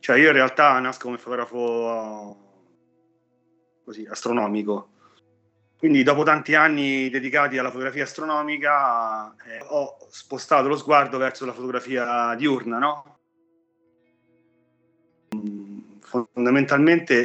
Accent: native